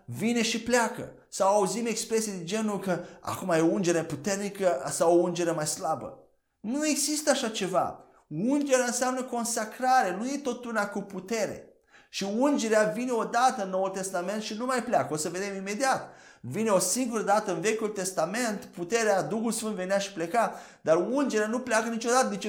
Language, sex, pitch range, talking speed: Romanian, male, 155-220 Hz, 175 wpm